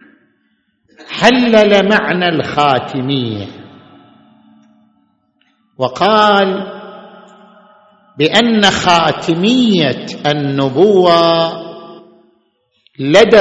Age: 50-69